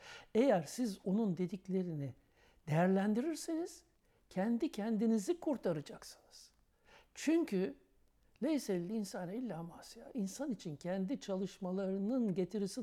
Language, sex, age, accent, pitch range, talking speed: Turkish, male, 60-79, native, 175-245 Hz, 90 wpm